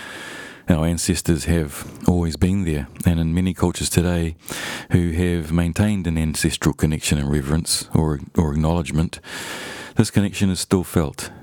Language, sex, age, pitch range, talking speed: English, male, 40-59, 80-90 Hz, 140 wpm